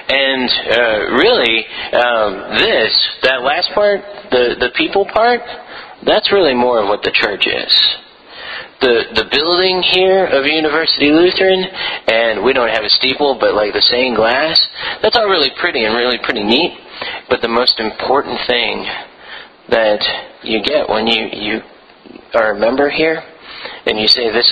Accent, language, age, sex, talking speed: American, English, 30-49, male, 160 wpm